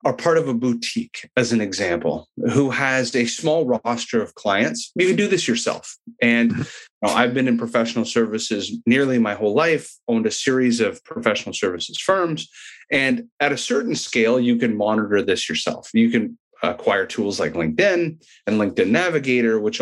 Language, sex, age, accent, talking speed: English, male, 30-49, American, 175 wpm